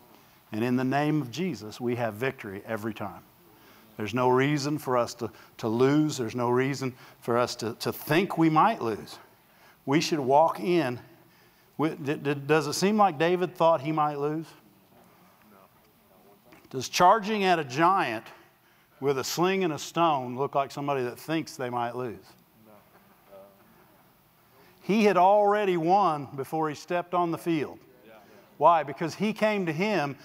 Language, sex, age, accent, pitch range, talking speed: English, male, 50-69, American, 130-170 Hz, 155 wpm